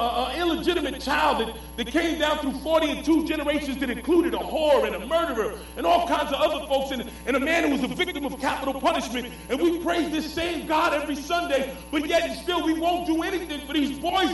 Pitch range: 235-315 Hz